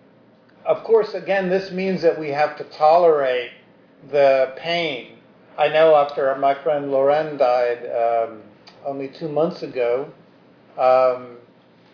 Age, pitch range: 50-69, 130-165 Hz